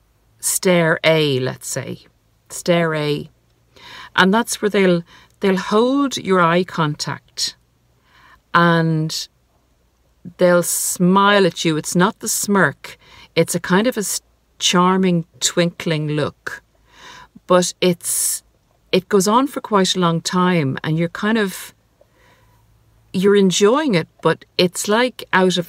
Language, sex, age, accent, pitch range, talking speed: English, female, 50-69, Irish, 150-185 Hz, 125 wpm